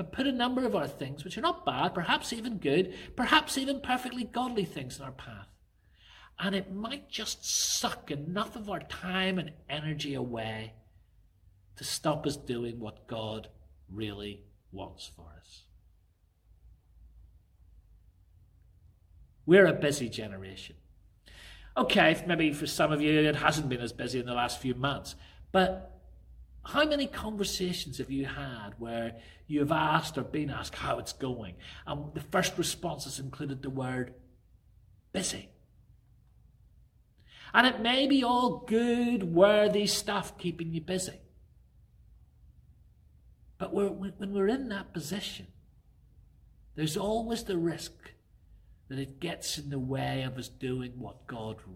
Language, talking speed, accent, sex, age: English, 140 wpm, British, male, 50-69